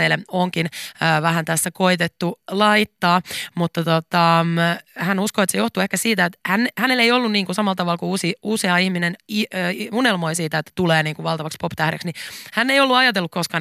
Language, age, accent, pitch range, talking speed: Finnish, 20-39, native, 155-195 Hz, 185 wpm